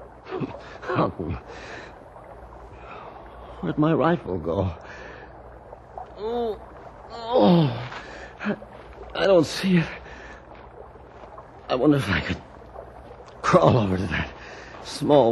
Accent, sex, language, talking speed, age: American, male, English, 80 wpm, 60-79